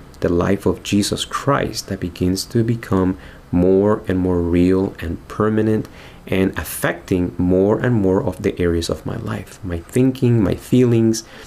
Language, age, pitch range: English, 30-49, 90-115 Hz